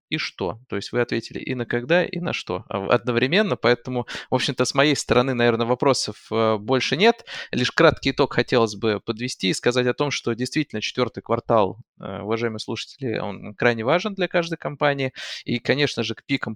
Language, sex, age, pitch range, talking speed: Russian, male, 20-39, 115-140 Hz, 180 wpm